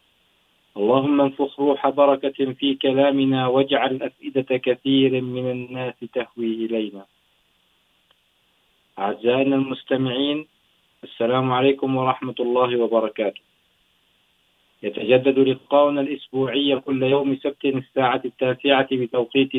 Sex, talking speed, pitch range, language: male, 90 wpm, 125-135 Hz, Urdu